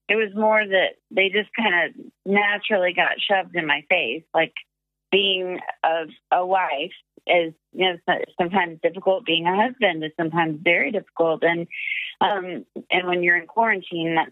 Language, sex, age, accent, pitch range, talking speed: English, female, 30-49, American, 170-200 Hz, 165 wpm